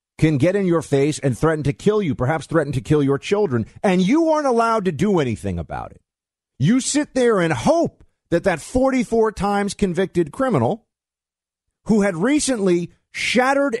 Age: 50-69